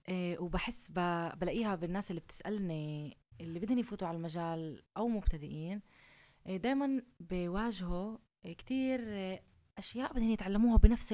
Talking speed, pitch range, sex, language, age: 125 wpm, 175-225 Hz, female, Arabic, 20-39